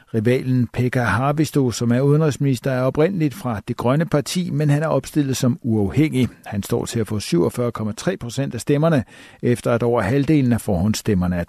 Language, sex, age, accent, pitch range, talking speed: Danish, male, 60-79, native, 115-145 Hz, 180 wpm